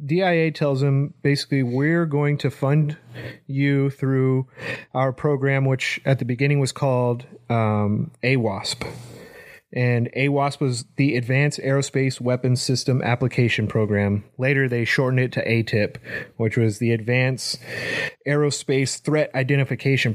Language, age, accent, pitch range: English, 30-49, American, 115-140 Hz